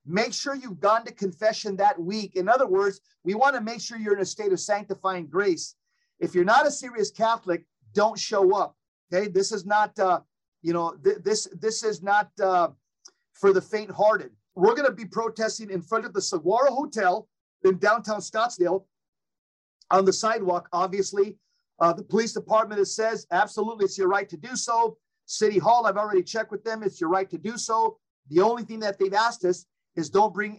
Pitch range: 185-225 Hz